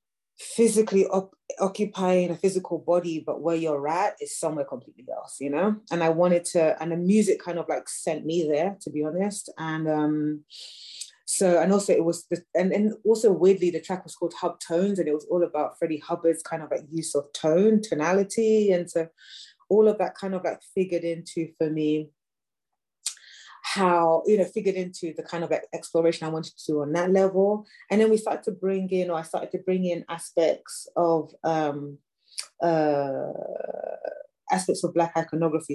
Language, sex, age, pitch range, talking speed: English, female, 30-49, 155-185 Hz, 190 wpm